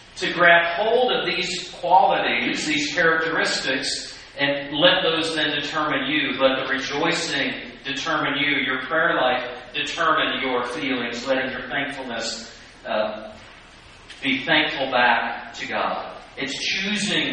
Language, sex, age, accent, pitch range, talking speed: English, male, 40-59, American, 130-155 Hz, 125 wpm